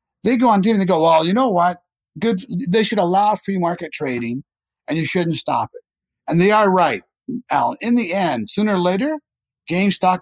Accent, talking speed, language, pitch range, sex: American, 210 wpm, English, 145-210 Hz, male